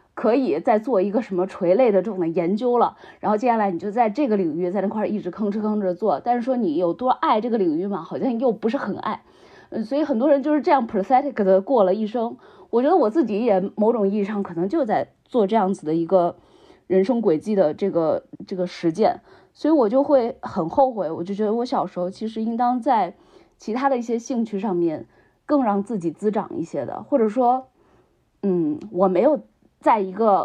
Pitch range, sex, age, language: 185-245 Hz, female, 20-39, Chinese